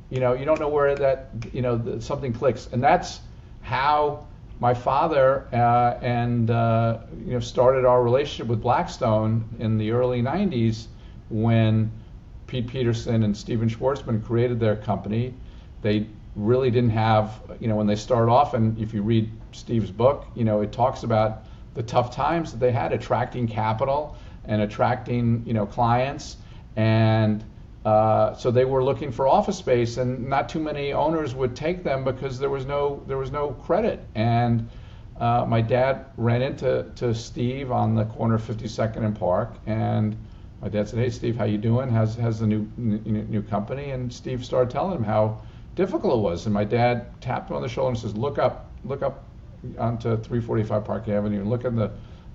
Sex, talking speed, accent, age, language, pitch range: male, 180 wpm, American, 50-69, English, 110-125 Hz